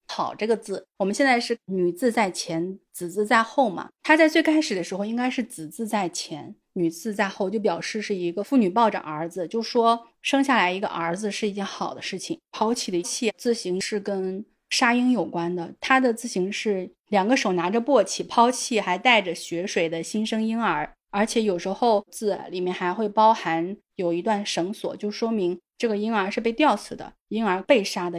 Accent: native